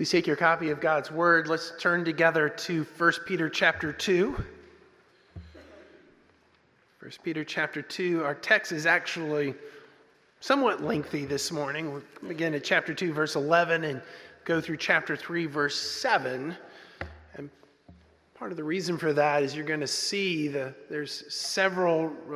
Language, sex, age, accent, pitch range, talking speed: English, male, 30-49, American, 155-190 Hz, 150 wpm